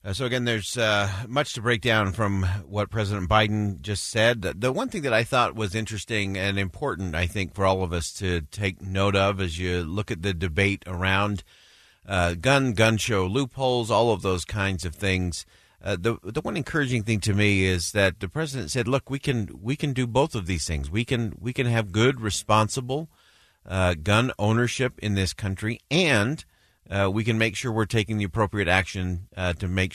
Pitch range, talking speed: 90-110 Hz, 205 wpm